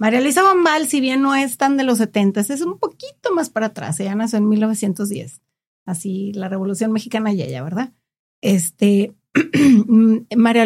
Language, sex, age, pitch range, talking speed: Spanish, female, 40-59, 200-250 Hz, 170 wpm